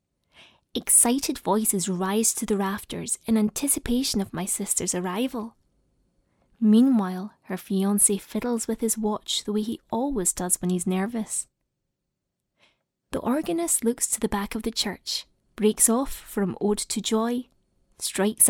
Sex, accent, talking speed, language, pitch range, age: female, British, 140 wpm, English, 205-245 Hz, 20-39